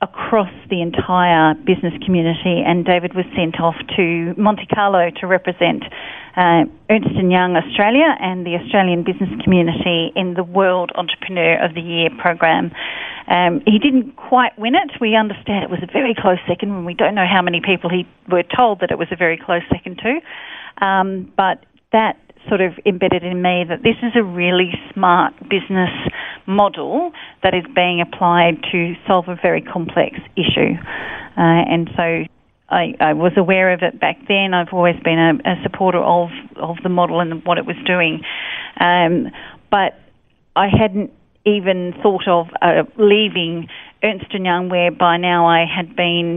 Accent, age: Australian, 40-59